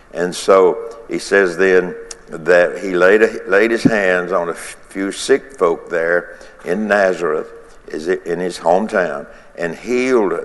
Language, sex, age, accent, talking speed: English, male, 60-79, American, 140 wpm